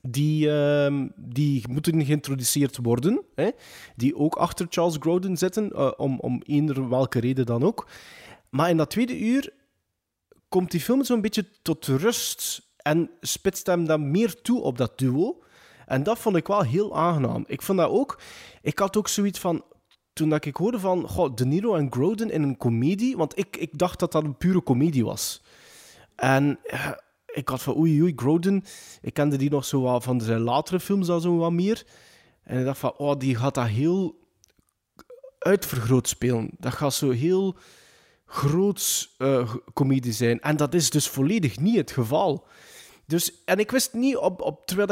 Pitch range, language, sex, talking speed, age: 135-195 Hz, Dutch, male, 180 wpm, 20-39